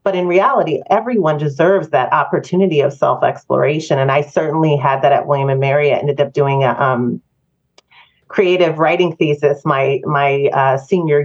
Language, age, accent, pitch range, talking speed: English, 40-59, American, 140-180 Hz, 165 wpm